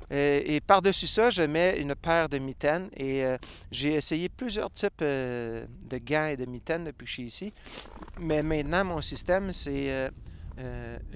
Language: French